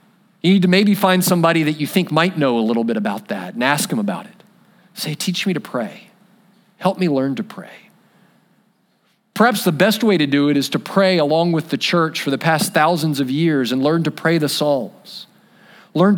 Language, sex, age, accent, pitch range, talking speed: English, male, 40-59, American, 145-205 Hz, 215 wpm